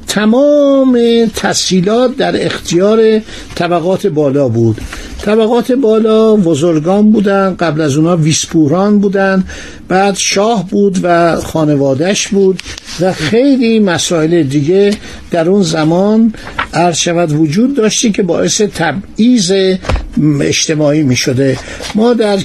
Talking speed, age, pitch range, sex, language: 105 wpm, 60-79, 155-210 Hz, male, Persian